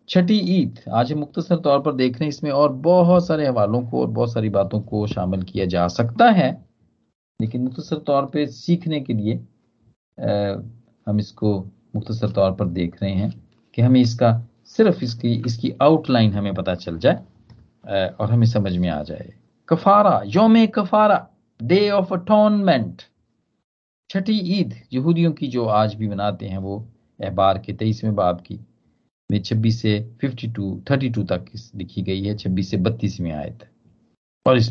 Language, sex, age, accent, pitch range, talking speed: Hindi, male, 50-69, native, 105-170 Hz, 140 wpm